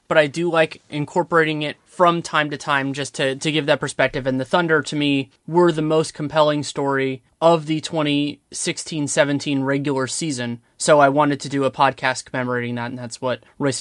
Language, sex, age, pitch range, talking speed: English, male, 20-39, 130-155 Hz, 190 wpm